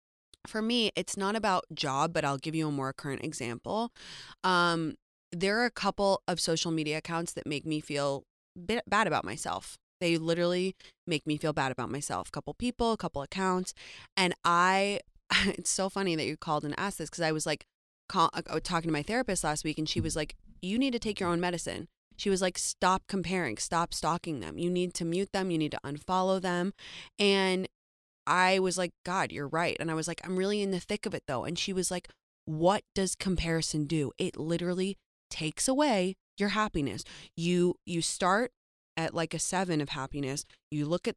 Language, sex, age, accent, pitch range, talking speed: English, female, 20-39, American, 155-190 Hz, 200 wpm